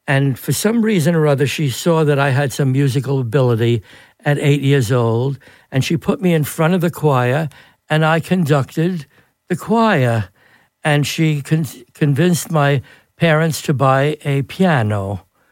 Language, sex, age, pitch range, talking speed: English, male, 60-79, 130-160 Hz, 160 wpm